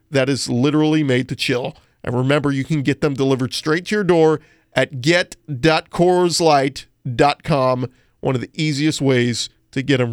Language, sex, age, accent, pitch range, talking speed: English, male, 40-59, American, 130-160 Hz, 160 wpm